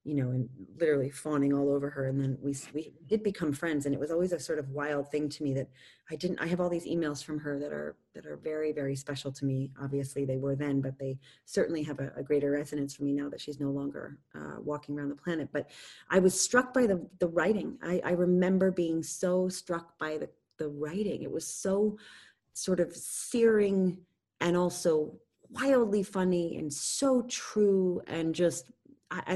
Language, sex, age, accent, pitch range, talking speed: English, female, 30-49, American, 145-175 Hz, 210 wpm